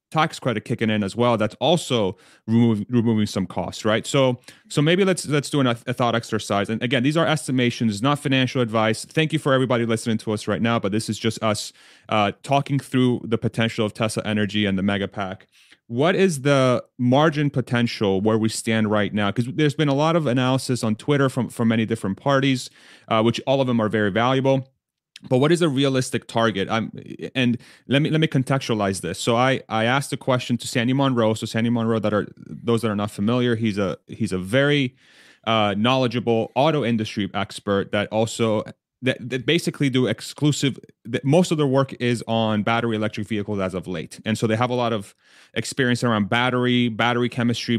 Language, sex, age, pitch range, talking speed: English, male, 30-49, 110-130 Hz, 205 wpm